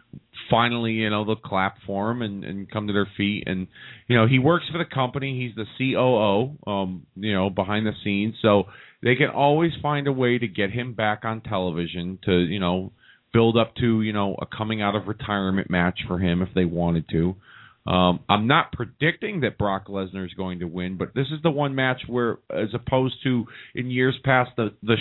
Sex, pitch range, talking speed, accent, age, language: male, 105-140 Hz, 210 wpm, American, 30-49, English